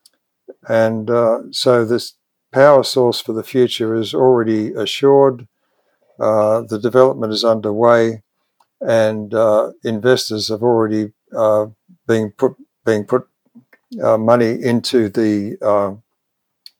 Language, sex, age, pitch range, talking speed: English, male, 60-79, 110-125 Hz, 110 wpm